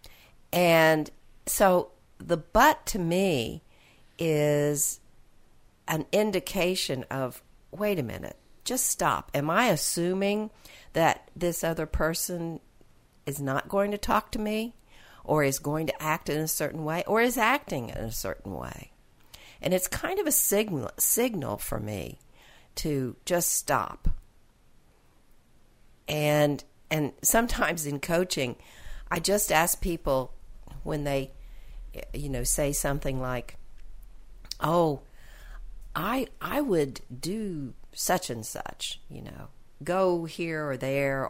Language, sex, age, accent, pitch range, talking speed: English, female, 60-79, American, 130-180 Hz, 125 wpm